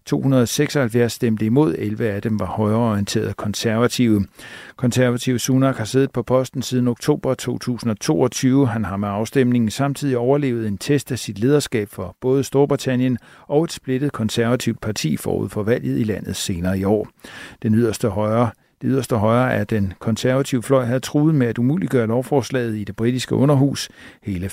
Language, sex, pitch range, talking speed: Danish, male, 110-130 Hz, 155 wpm